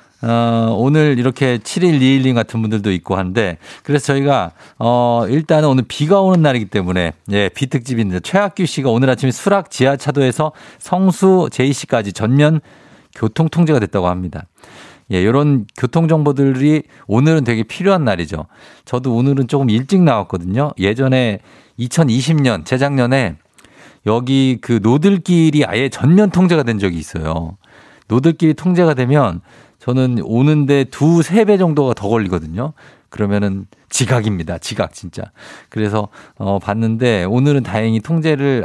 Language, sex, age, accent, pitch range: Korean, male, 50-69, native, 110-150 Hz